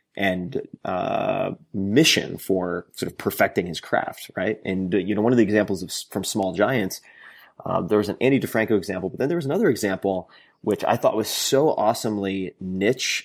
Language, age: English, 30-49